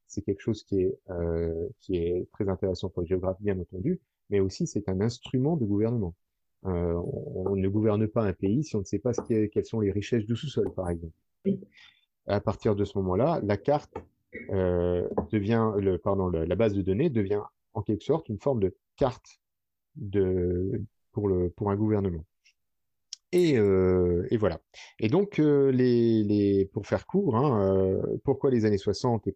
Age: 30-49